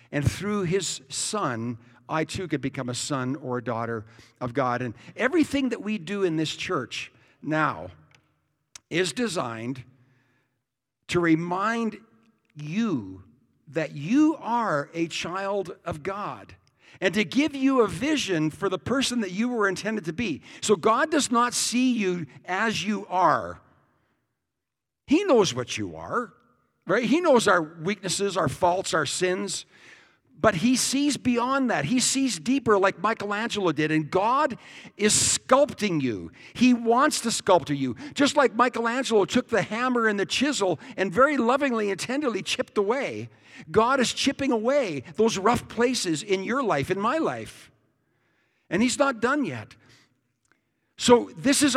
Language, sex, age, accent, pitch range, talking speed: English, male, 60-79, American, 145-240 Hz, 155 wpm